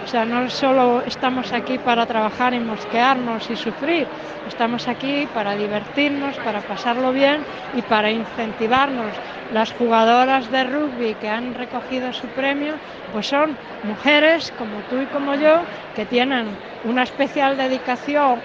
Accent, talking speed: Spanish, 145 wpm